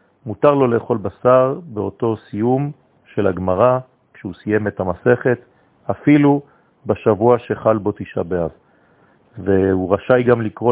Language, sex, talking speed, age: French, male, 120 wpm, 40-59